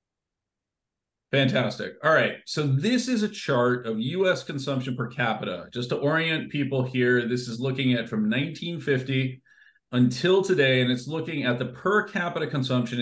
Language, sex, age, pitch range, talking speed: English, male, 40-59, 115-145 Hz, 155 wpm